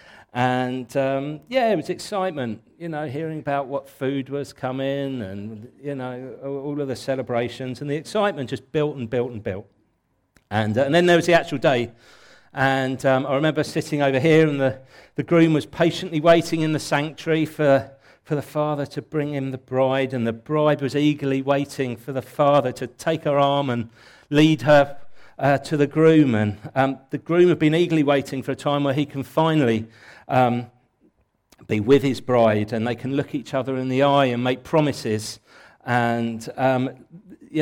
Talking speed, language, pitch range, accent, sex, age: 190 wpm, English, 125-155 Hz, British, male, 40-59